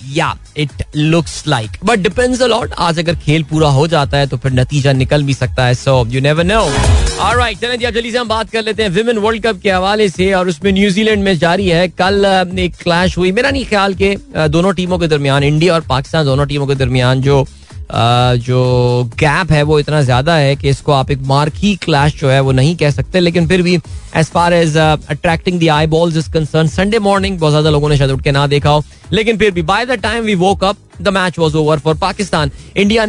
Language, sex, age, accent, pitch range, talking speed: Hindi, male, 20-39, native, 150-195 Hz, 165 wpm